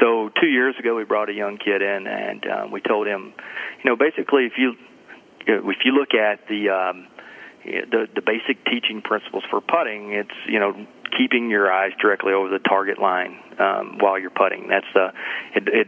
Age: 40-59